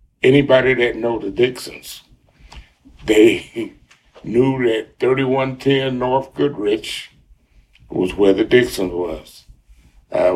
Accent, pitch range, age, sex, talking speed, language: American, 95-125 Hz, 60-79, male, 100 wpm, English